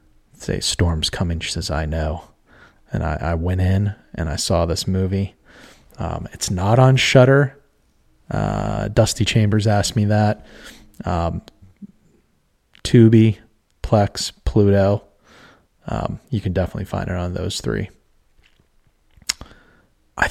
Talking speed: 125 wpm